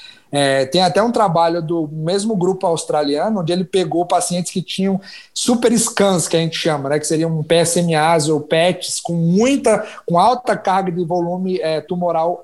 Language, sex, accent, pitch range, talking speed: Portuguese, male, Brazilian, 155-205 Hz, 160 wpm